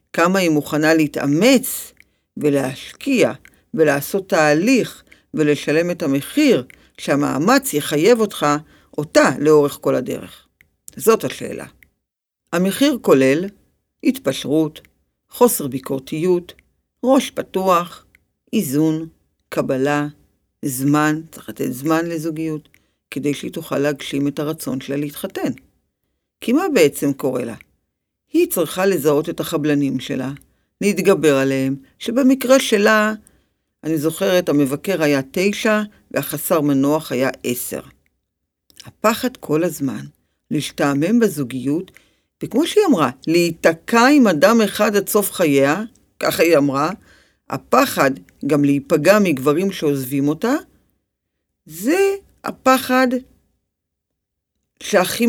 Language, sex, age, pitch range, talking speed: Hebrew, female, 50-69, 140-200 Hz, 100 wpm